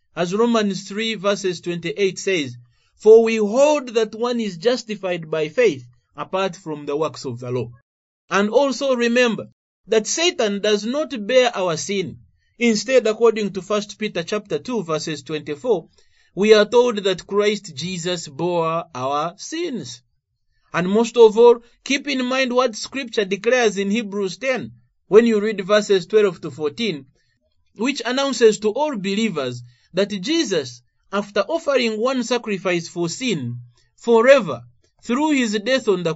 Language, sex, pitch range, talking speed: English, male, 165-240 Hz, 150 wpm